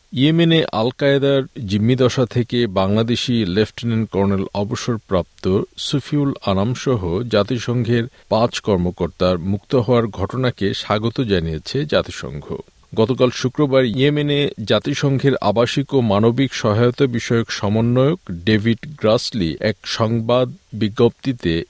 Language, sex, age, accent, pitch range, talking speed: Bengali, male, 50-69, native, 100-130 Hz, 100 wpm